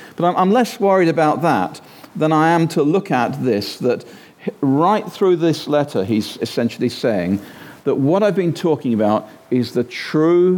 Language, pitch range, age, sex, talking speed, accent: English, 125-160 Hz, 50-69, male, 170 wpm, British